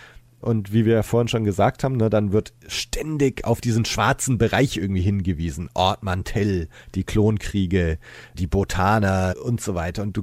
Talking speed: 170 wpm